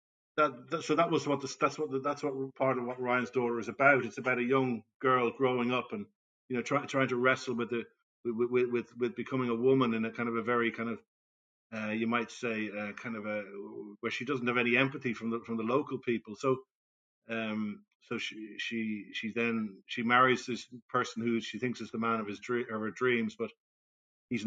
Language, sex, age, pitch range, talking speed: English, male, 50-69, 115-135 Hz, 235 wpm